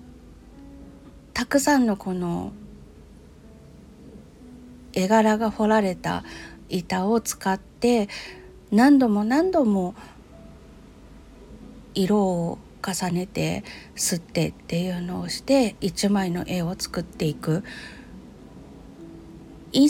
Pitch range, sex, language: 175-235 Hz, female, Japanese